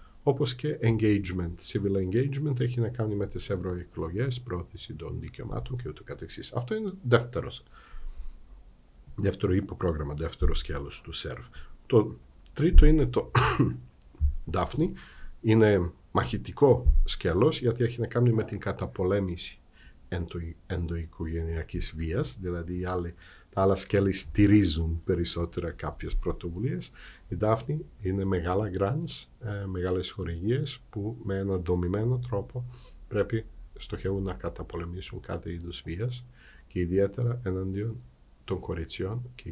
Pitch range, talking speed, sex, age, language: 85-115 Hz, 115 wpm, male, 50-69, Greek